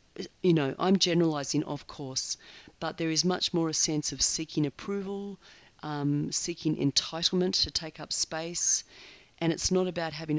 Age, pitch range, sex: 40-59, 145-180 Hz, female